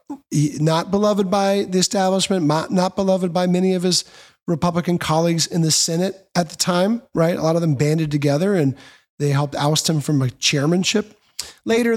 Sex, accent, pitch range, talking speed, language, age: male, American, 140-175 Hz, 180 wpm, English, 30-49